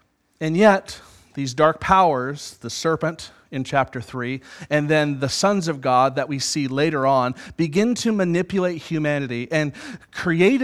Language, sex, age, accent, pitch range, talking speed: English, male, 30-49, American, 135-190 Hz, 150 wpm